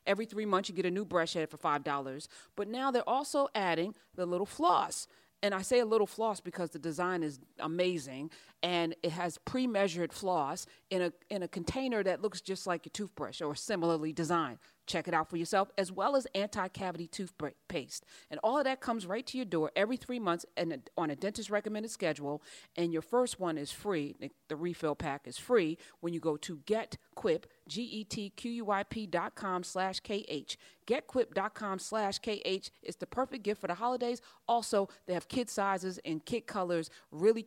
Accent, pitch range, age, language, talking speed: American, 170-230 Hz, 40-59, English, 205 wpm